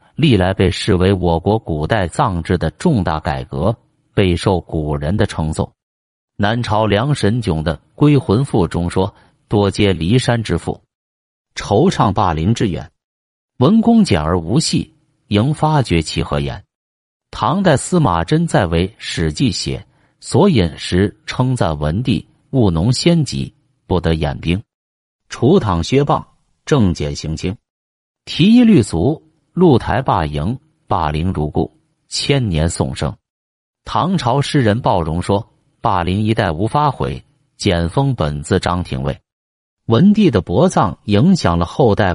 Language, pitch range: Chinese, 85-130 Hz